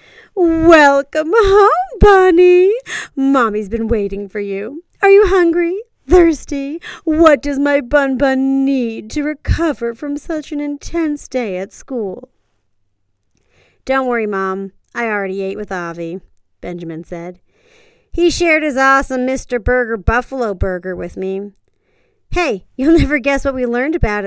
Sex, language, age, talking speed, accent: female, English, 40-59, 135 wpm, American